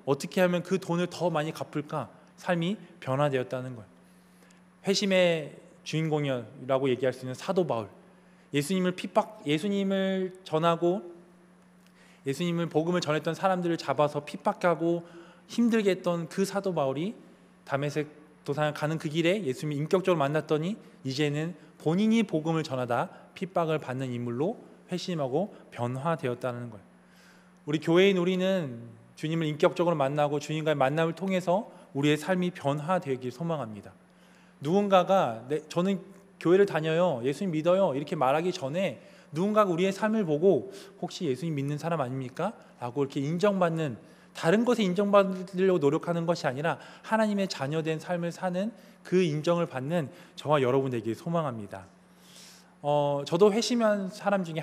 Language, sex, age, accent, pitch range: Korean, male, 20-39, native, 145-185 Hz